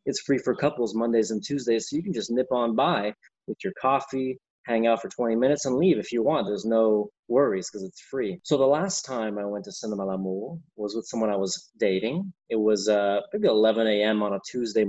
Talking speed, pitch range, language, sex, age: 235 wpm, 105-135 Hz, English, male, 30-49